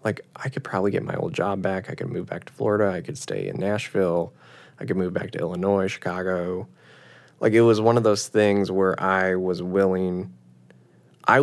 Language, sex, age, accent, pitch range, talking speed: English, male, 20-39, American, 95-110 Hz, 205 wpm